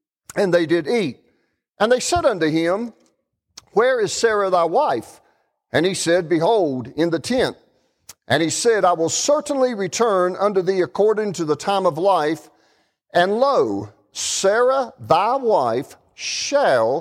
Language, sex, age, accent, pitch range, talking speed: English, male, 50-69, American, 160-235 Hz, 150 wpm